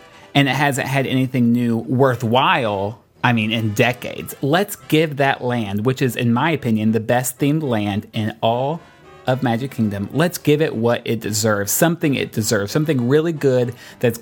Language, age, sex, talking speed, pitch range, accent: English, 30-49, male, 175 wpm, 115-150 Hz, American